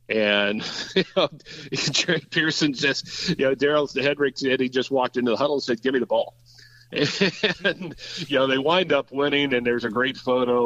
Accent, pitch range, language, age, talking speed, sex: American, 110-130 Hz, English, 50-69, 195 wpm, male